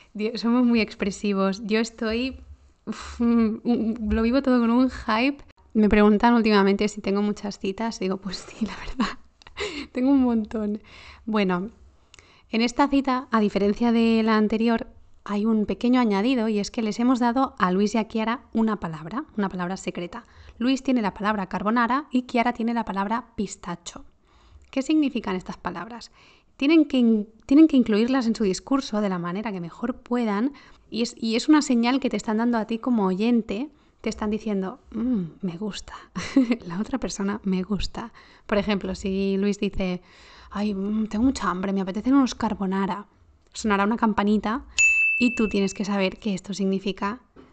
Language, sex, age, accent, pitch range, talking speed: Spanish, female, 20-39, Spanish, 195-235 Hz, 170 wpm